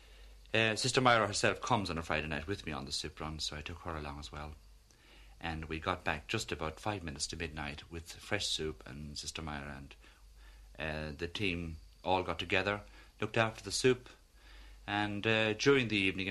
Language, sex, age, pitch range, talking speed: English, male, 50-69, 80-105 Hz, 200 wpm